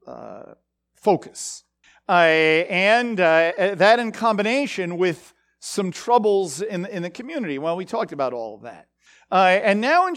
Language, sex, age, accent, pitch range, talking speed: English, male, 50-69, American, 175-255 Hz, 150 wpm